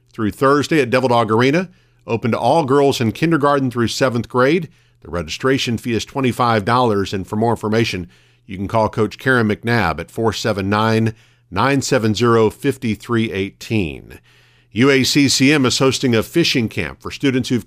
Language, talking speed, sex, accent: English, 140 wpm, male, American